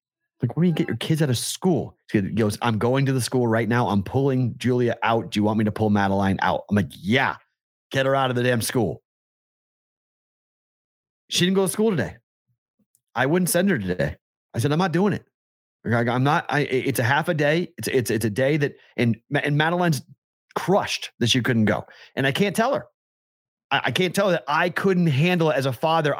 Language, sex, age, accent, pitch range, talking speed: English, male, 30-49, American, 120-170 Hz, 220 wpm